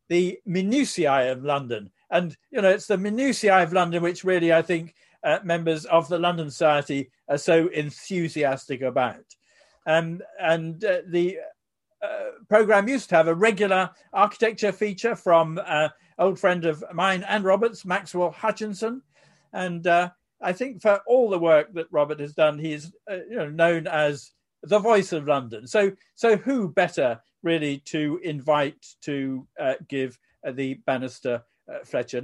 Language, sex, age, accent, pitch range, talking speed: English, male, 50-69, British, 150-190 Hz, 160 wpm